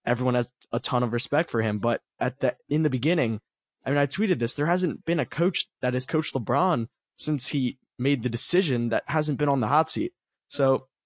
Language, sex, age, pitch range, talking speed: English, male, 20-39, 120-150 Hz, 220 wpm